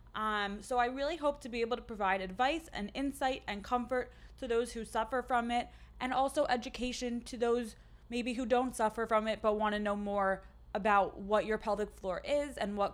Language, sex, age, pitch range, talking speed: English, female, 20-39, 195-245 Hz, 210 wpm